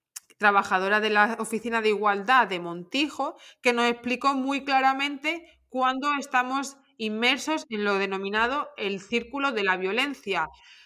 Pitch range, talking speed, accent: 220-280 Hz, 135 wpm, Spanish